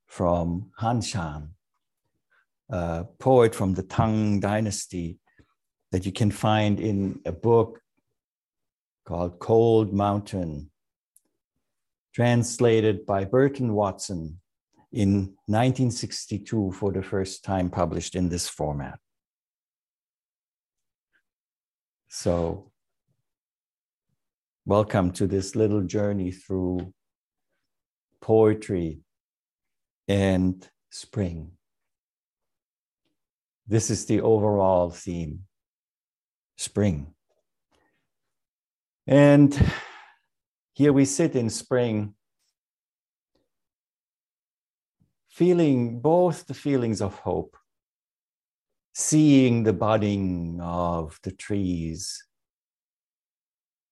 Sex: male